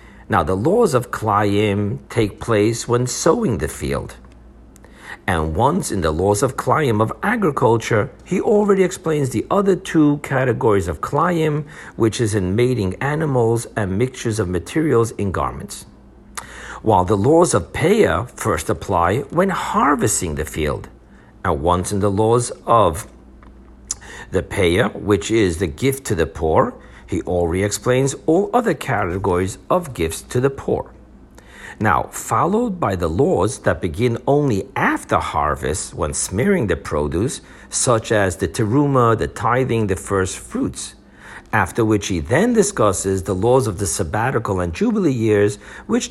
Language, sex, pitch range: English, male, 95-130 Hz